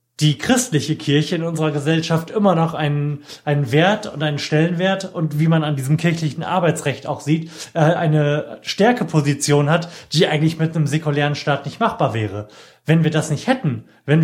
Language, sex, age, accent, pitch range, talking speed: German, male, 30-49, German, 145-180 Hz, 175 wpm